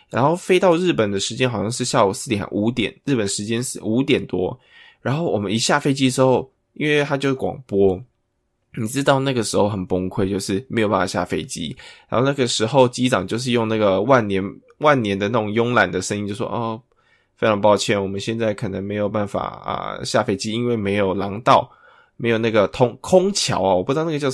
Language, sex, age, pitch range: Chinese, male, 20-39, 100-130 Hz